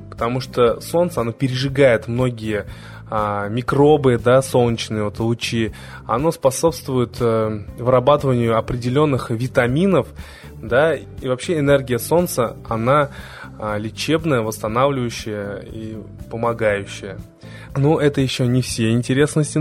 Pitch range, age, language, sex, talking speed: 115-145 Hz, 20-39, Russian, male, 100 wpm